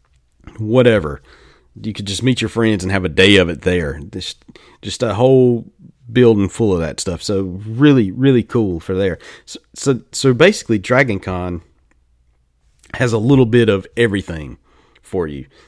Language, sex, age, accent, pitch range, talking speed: English, male, 40-59, American, 80-120 Hz, 165 wpm